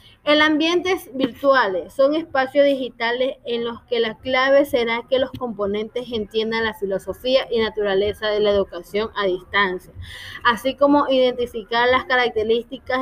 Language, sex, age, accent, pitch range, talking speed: Spanish, female, 20-39, American, 230-265 Hz, 140 wpm